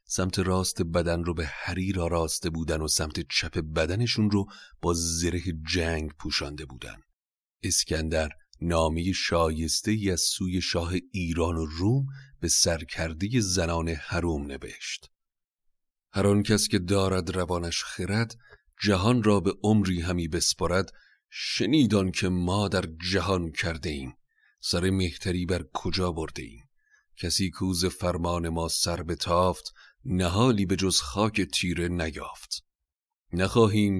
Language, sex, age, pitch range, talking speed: Persian, male, 40-59, 85-95 Hz, 125 wpm